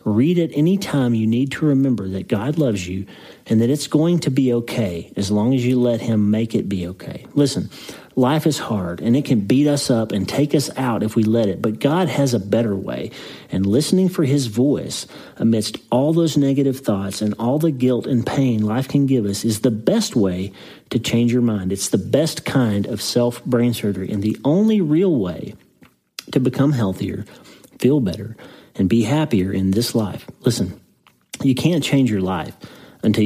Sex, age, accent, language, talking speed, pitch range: male, 40-59, American, English, 200 wpm, 105-135 Hz